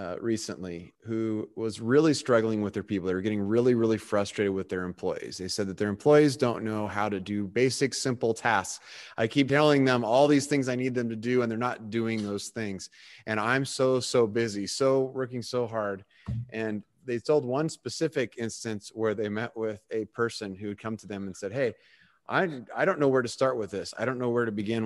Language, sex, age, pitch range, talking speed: English, male, 30-49, 105-130 Hz, 225 wpm